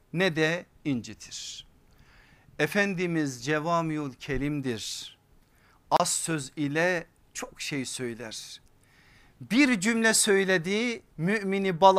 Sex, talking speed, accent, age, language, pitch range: male, 85 wpm, native, 50-69, Turkish, 135-200 Hz